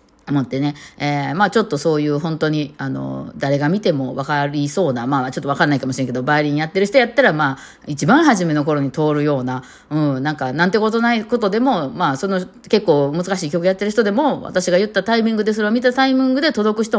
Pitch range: 145-215 Hz